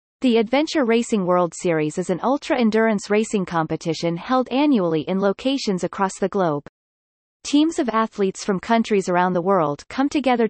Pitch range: 180-245 Hz